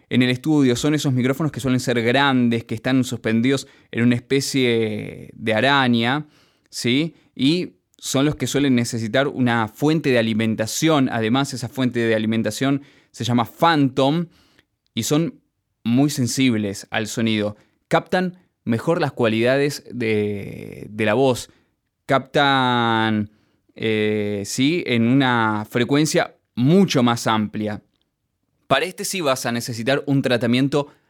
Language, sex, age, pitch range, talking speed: Spanish, male, 20-39, 115-140 Hz, 125 wpm